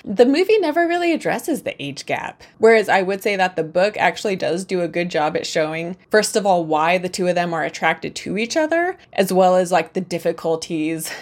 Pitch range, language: 165-215 Hz, English